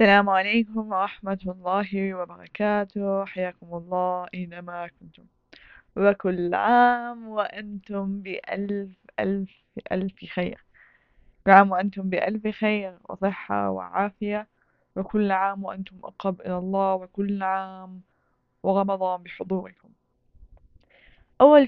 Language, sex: Arabic, female